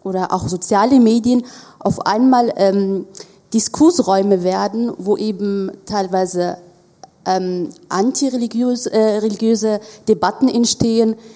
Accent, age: German, 30-49